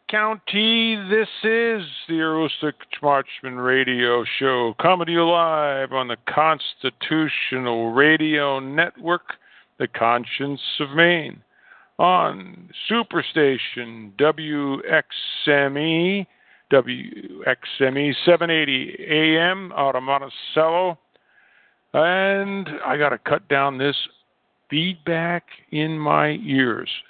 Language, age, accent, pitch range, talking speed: English, 50-69, American, 135-170 Hz, 85 wpm